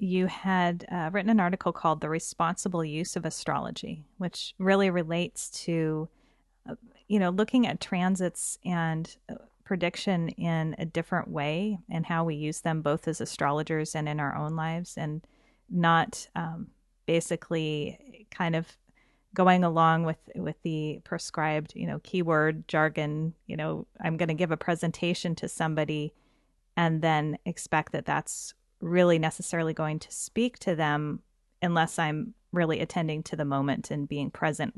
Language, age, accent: English, 30-49, American